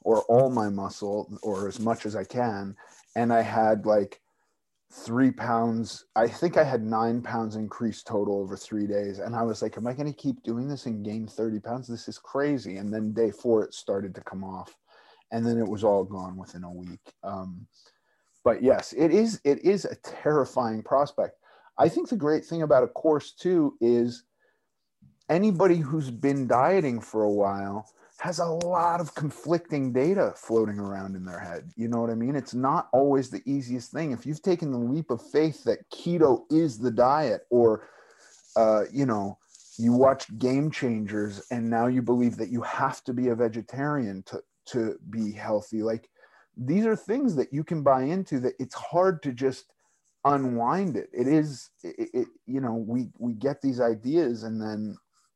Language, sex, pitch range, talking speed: English, male, 110-140 Hz, 190 wpm